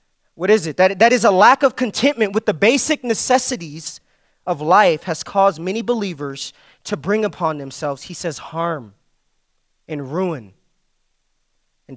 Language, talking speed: English, 150 wpm